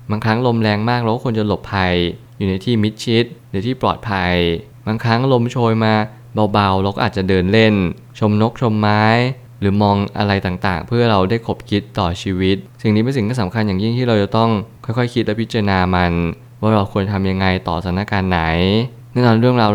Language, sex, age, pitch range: Thai, male, 20-39, 95-120 Hz